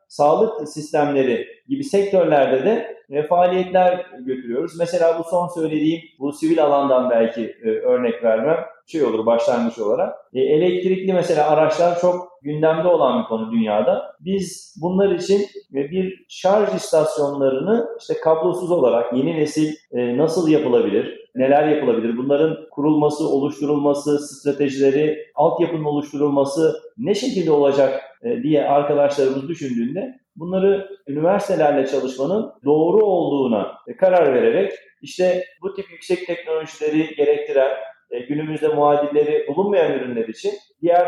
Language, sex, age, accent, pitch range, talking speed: Turkish, male, 40-59, native, 140-185 Hz, 110 wpm